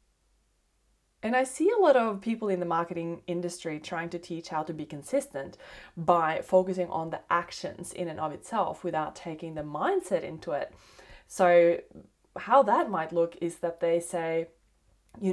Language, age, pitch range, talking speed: English, 20-39, 170-215 Hz, 170 wpm